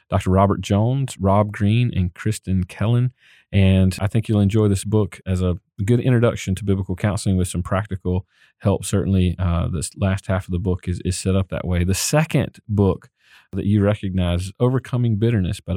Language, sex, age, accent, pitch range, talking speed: English, male, 40-59, American, 95-115 Hz, 190 wpm